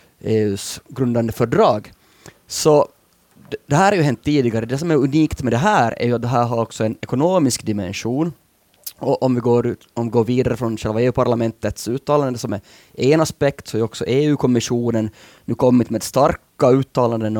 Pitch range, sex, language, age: 110-140 Hz, male, Swedish, 30-49